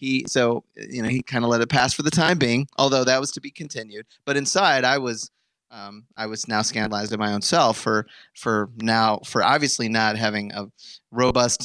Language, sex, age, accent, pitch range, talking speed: English, male, 30-49, American, 105-130 Hz, 215 wpm